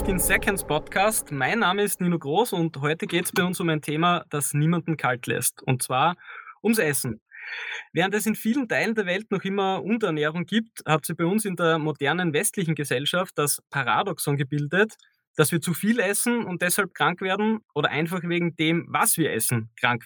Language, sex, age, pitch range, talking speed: English, male, 20-39, 150-200 Hz, 195 wpm